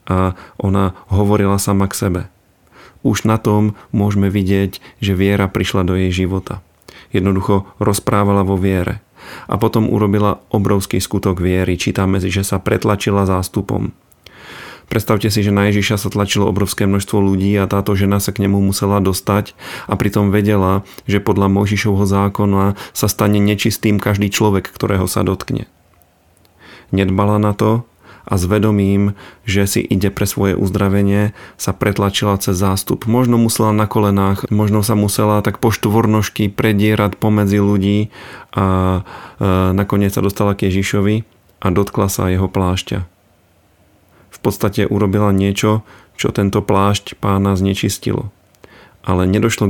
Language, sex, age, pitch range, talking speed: Slovak, male, 30-49, 95-105 Hz, 140 wpm